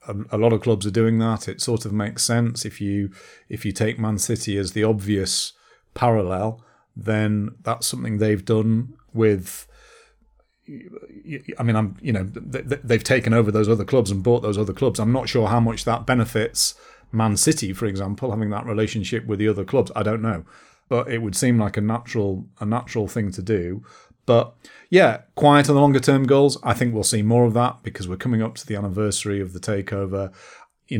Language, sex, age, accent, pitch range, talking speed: English, male, 40-59, British, 100-115 Hz, 200 wpm